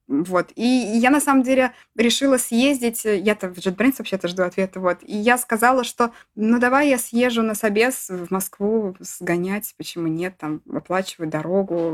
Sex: female